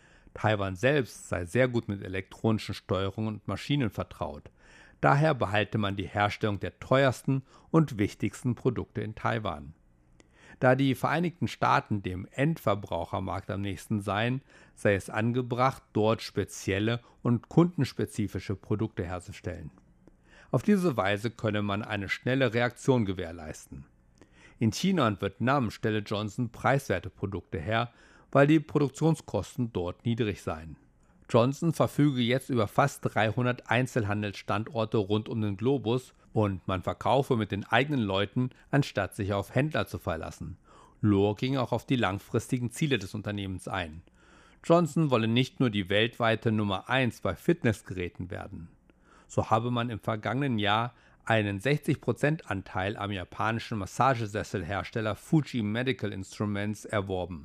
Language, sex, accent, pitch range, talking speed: German, male, German, 100-125 Hz, 130 wpm